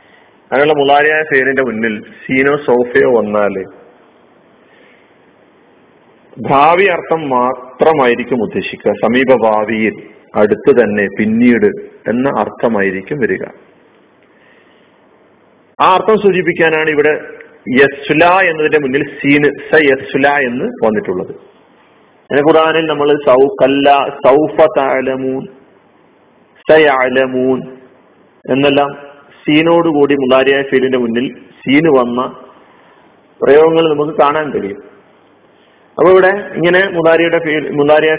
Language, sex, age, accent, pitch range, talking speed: Malayalam, male, 40-59, native, 125-155 Hz, 85 wpm